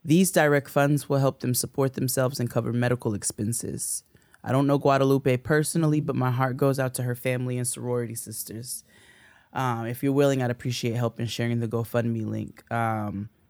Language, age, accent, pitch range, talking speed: English, 20-39, American, 115-130 Hz, 180 wpm